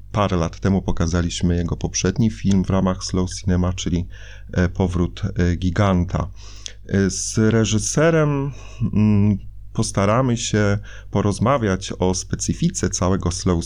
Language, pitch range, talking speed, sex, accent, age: Polish, 90-100 Hz, 100 wpm, male, native, 30-49